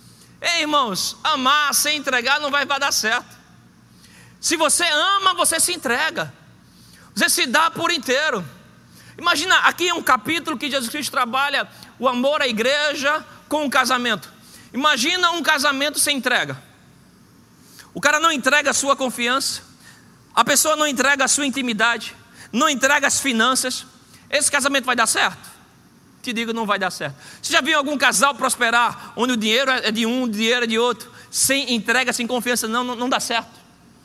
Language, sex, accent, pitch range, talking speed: Portuguese, male, Brazilian, 245-295 Hz, 170 wpm